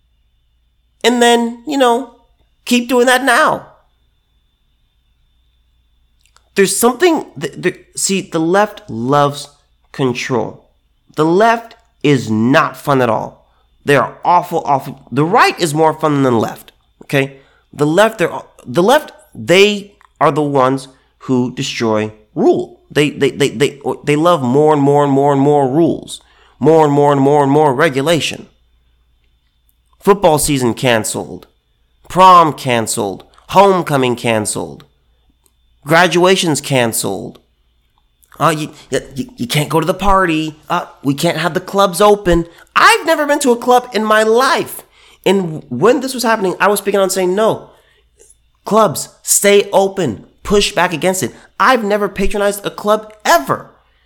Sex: male